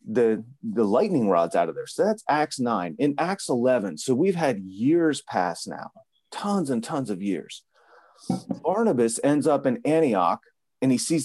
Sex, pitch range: male, 115-165 Hz